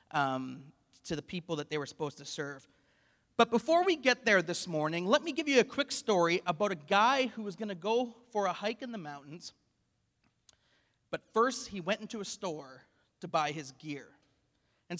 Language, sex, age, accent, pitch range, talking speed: English, male, 30-49, American, 180-225 Hz, 200 wpm